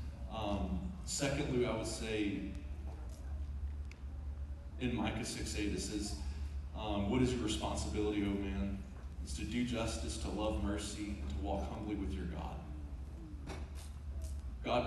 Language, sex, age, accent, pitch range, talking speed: English, male, 30-49, American, 70-100 Hz, 130 wpm